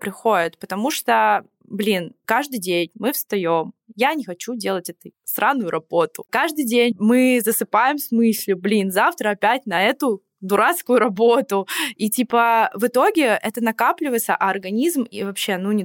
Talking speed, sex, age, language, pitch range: 150 wpm, female, 20-39, Russian, 195-240 Hz